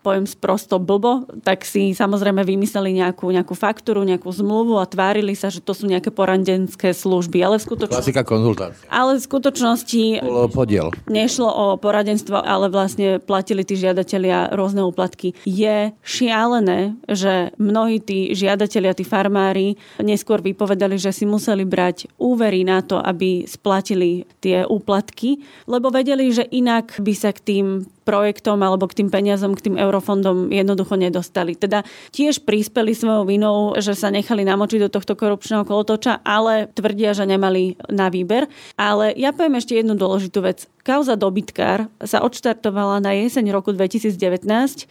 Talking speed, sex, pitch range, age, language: 145 wpm, female, 195-220 Hz, 30-49, Slovak